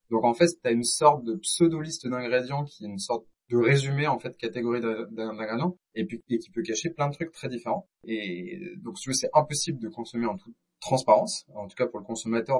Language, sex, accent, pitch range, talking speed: French, male, French, 115-170 Hz, 220 wpm